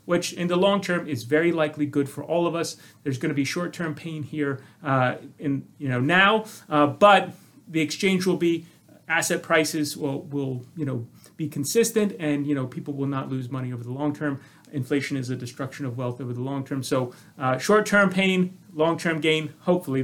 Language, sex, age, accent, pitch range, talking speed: English, male, 30-49, American, 140-170 Hz, 205 wpm